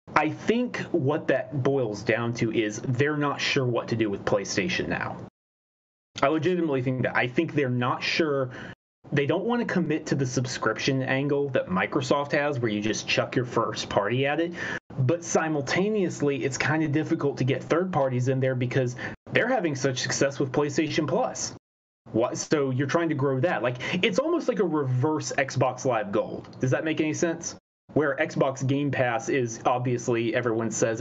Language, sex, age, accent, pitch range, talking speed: English, male, 30-49, American, 120-155 Hz, 185 wpm